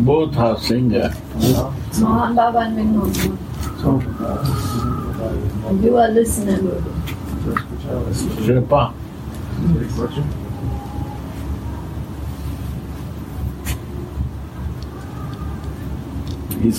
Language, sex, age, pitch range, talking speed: English, male, 60-79, 95-125 Hz, 45 wpm